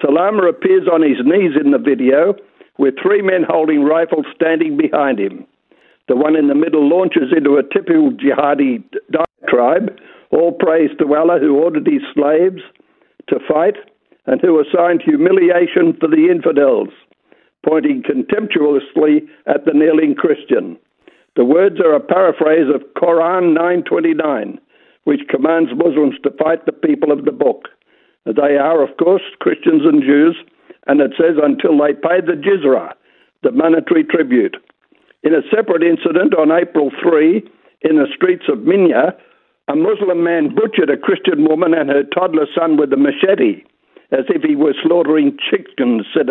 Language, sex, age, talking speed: English, male, 60-79, 155 wpm